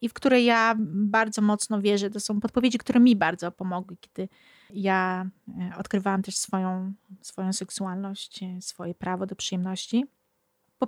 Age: 30-49